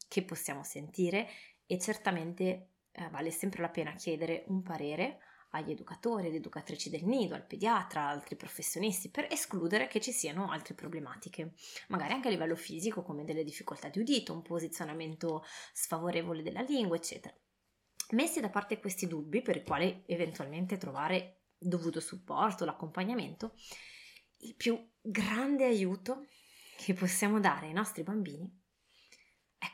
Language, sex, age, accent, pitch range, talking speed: Italian, female, 20-39, native, 170-215 Hz, 140 wpm